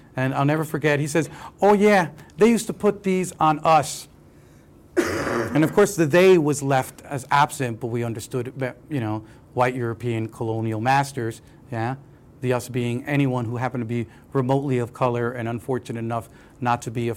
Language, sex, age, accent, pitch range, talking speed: English, male, 40-59, American, 115-140 Hz, 185 wpm